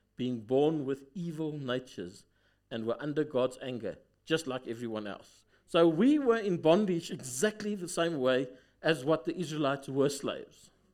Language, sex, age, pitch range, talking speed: English, male, 60-79, 115-185 Hz, 160 wpm